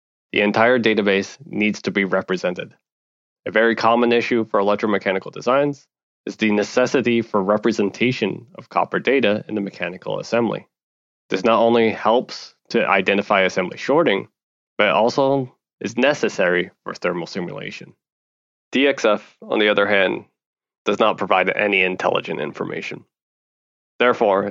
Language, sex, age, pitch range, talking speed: English, male, 20-39, 95-115 Hz, 130 wpm